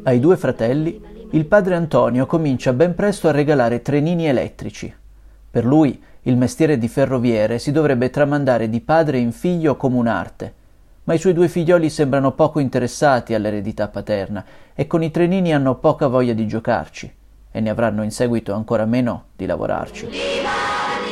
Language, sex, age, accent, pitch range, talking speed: Italian, male, 30-49, native, 125-165 Hz, 160 wpm